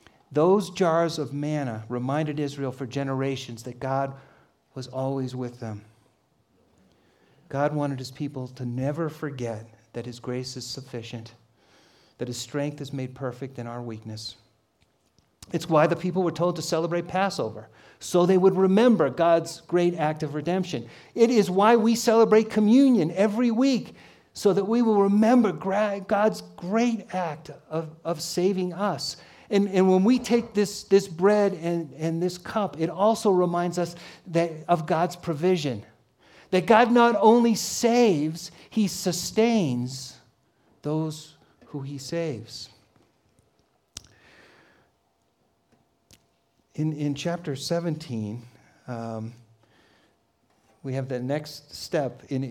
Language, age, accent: English, 50-69, American